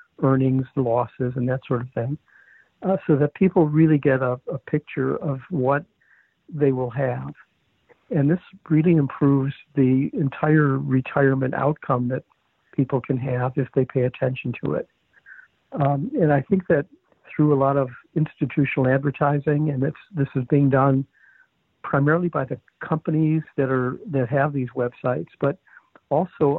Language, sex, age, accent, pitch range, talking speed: English, male, 60-79, American, 130-150 Hz, 150 wpm